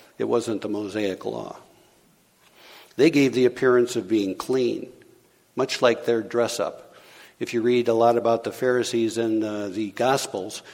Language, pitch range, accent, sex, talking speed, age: English, 110-135 Hz, American, male, 155 wpm, 60-79